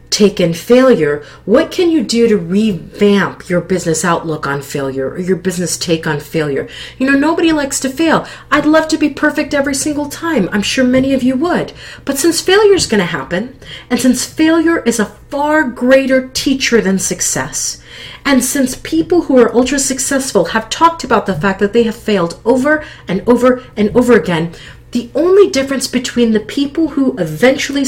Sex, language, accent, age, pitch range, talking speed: female, English, American, 40-59, 160-265 Hz, 185 wpm